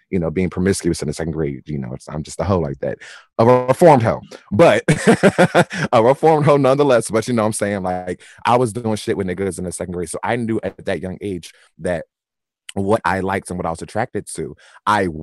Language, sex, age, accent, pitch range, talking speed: English, male, 30-49, American, 90-110 Hz, 235 wpm